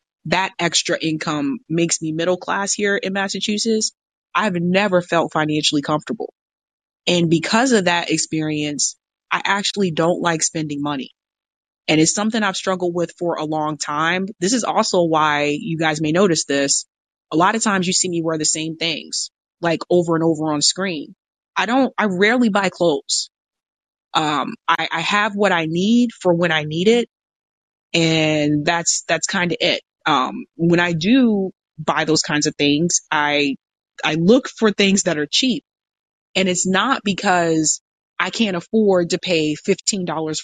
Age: 20-39